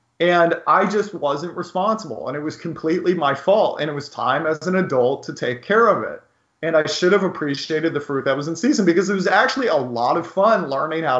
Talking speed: 235 wpm